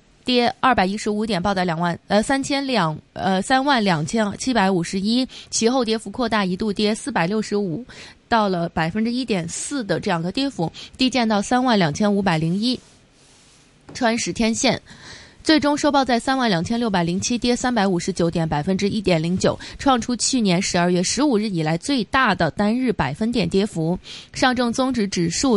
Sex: female